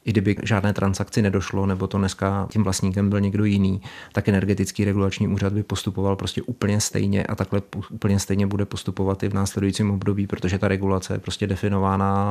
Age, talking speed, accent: 30-49, 185 wpm, native